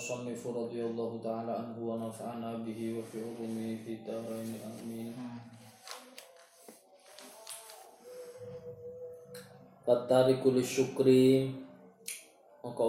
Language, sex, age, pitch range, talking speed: Malay, male, 20-39, 110-130 Hz, 70 wpm